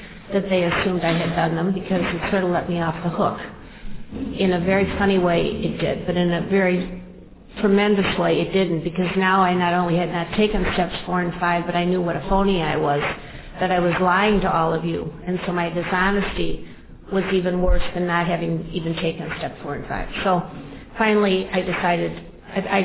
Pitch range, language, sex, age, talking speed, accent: 170-200 Hz, English, female, 50-69, 215 wpm, American